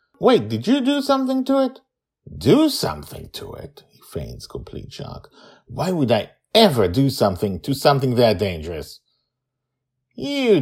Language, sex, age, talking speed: English, male, 50-69, 145 wpm